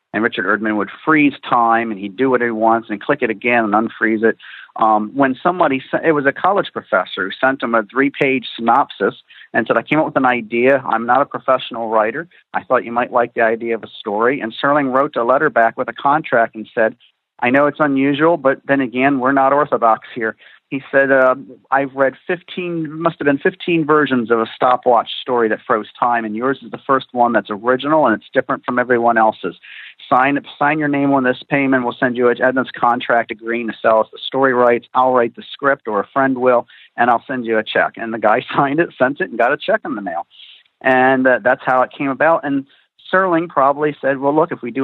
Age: 50-69